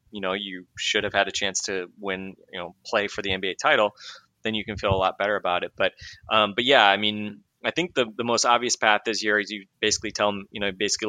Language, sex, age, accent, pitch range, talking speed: English, male, 20-39, American, 95-110 Hz, 265 wpm